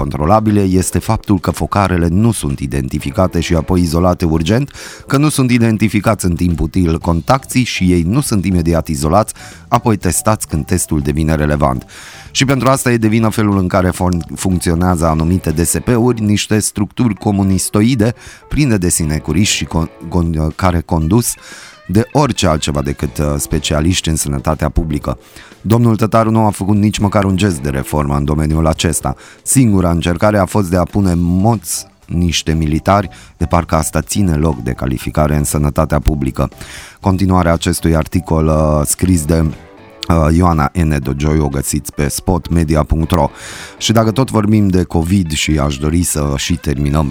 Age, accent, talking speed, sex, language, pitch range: 30-49, native, 150 wpm, male, Romanian, 80-105 Hz